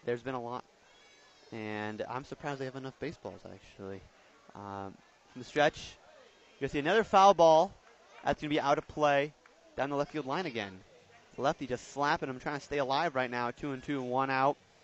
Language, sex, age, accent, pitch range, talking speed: English, male, 30-49, American, 120-145 Hz, 205 wpm